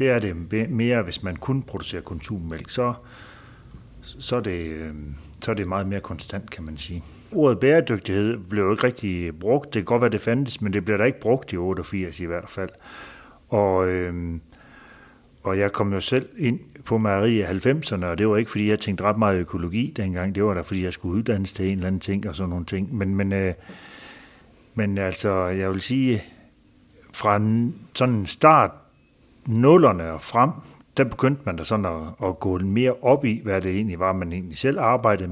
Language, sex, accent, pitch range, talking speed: Danish, male, native, 90-115 Hz, 200 wpm